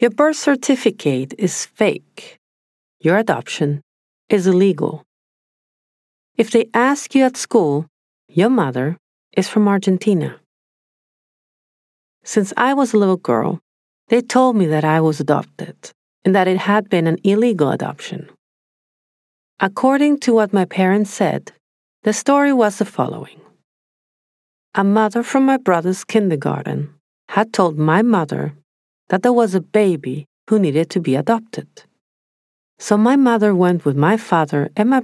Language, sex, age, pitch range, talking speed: English, female, 40-59, 165-230 Hz, 140 wpm